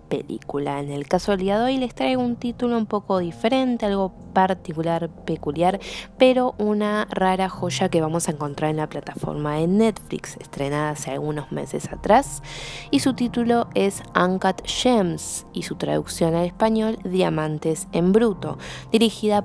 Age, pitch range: 20-39, 160-210 Hz